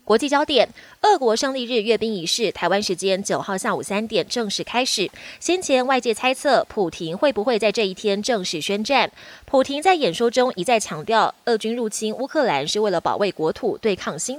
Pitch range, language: 195-265 Hz, Chinese